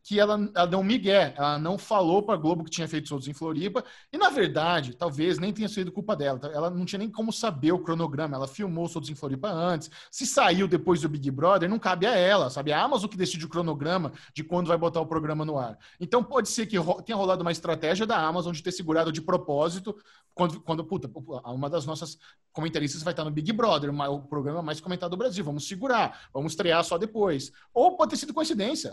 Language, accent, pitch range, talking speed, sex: Portuguese, Brazilian, 160-210 Hz, 230 wpm, male